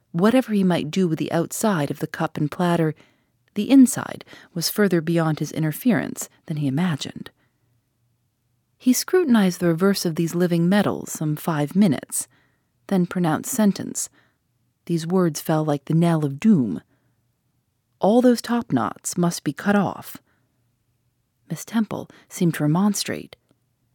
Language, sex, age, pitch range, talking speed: English, female, 30-49, 150-205 Hz, 145 wpm